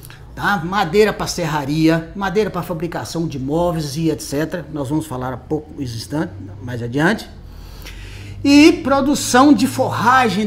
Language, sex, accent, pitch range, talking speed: Portuguese, male, Brazilian, 165-230 Hz, 120 wpm